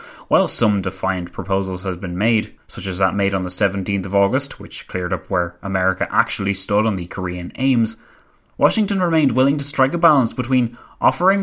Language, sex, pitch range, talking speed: English, male, 95-130 Hz, 190 wpm